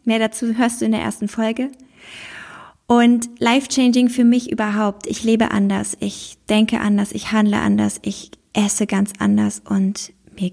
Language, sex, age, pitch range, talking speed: German, female, 20-39, 210-250 Hz, 160 wpm